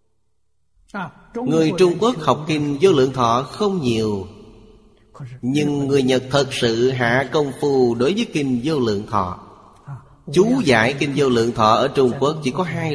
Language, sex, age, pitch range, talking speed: Vietnamese, male, 30-49, 110-150 Hz, 165 wpm